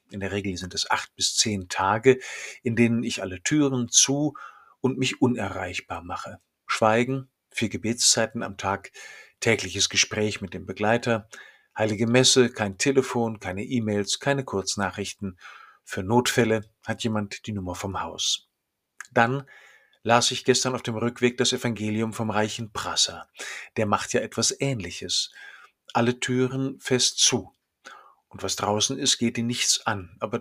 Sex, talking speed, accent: male, 150 wpm, German